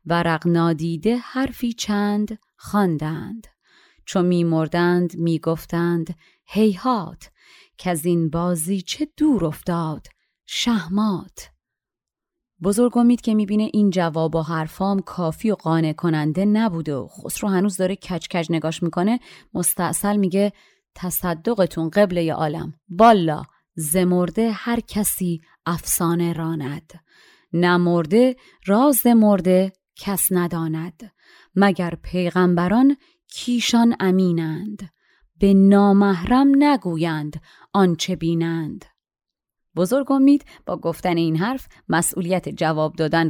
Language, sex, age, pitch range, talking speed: Persian, female, 30-49, 165-215 Hz, 100 wpm